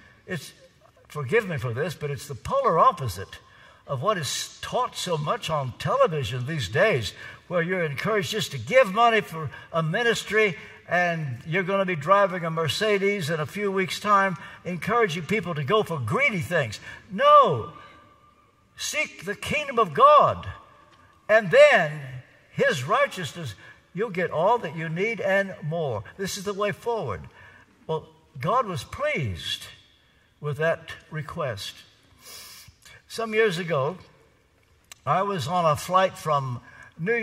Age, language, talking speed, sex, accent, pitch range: 60-79, English, 145 wpm, male, American, 140-195 Hz